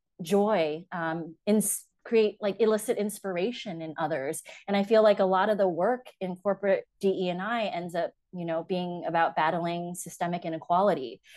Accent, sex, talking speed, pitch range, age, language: American, female, 170 wpm, 170-220 Hz, 20-39, English